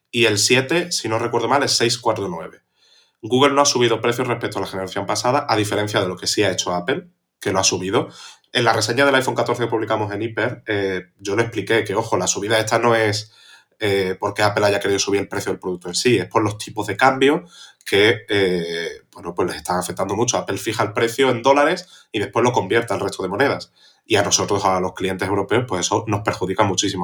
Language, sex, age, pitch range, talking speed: Spanish, male, 20-39, 100-125 Hz, 225 wpm